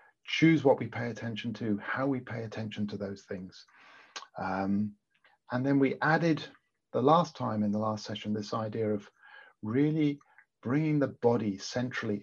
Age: 50-69